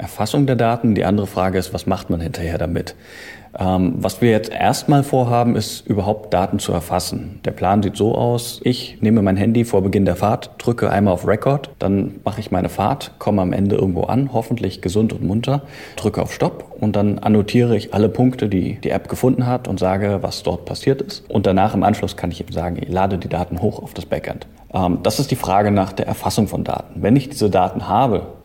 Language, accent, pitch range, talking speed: German, German, 90-115 Hz, 220 wpm